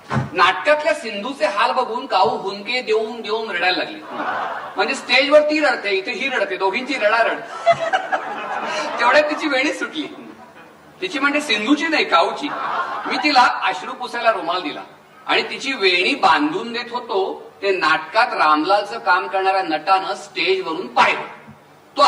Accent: native